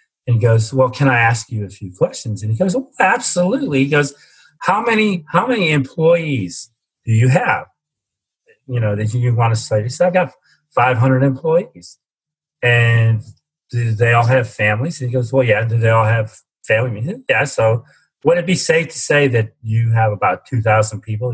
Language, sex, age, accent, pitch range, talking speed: English, male, 40-59, American, 110-150 Hz, 200 wpm